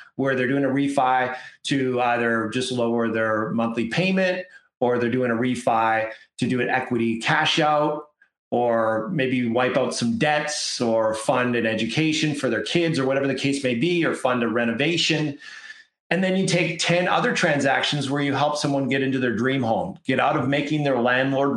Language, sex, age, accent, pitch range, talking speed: English, male, 30-49, American, 120-150 Hz, 190 wpm